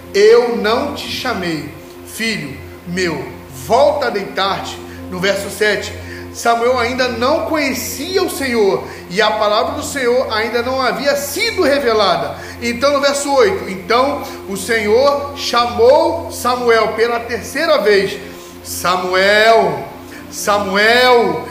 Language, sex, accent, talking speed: Portuguese, male, Brazilian, 115 wpm